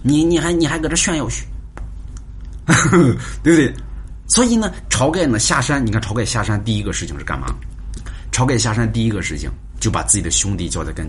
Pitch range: 85-115 Hz